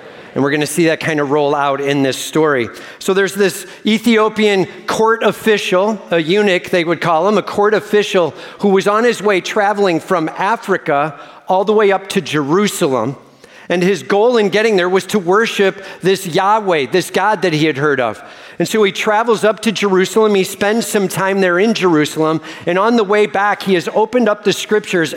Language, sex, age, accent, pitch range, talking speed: English, male, 50-69, American, 170-210 Hz, 205 wpm